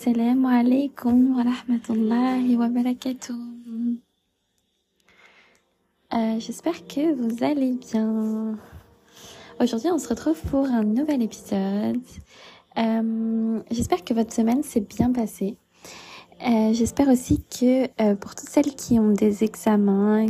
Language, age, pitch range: French, 20-39, 210-245 Hz